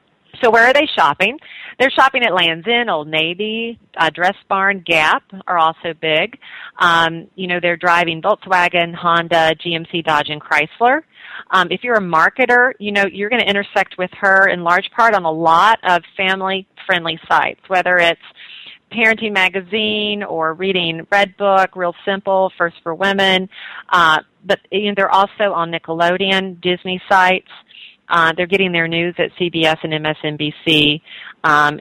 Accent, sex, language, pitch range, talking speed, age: American, female, English, 165-205 Hz, 155 wpm, 40-59